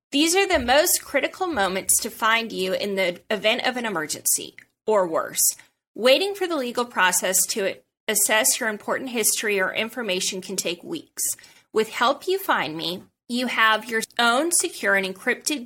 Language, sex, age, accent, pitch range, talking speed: English, female, 30-49, American, 195-270 Hz, 170 wpm